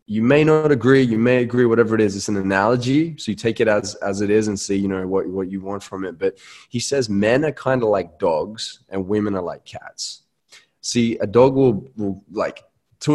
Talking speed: 240 wpm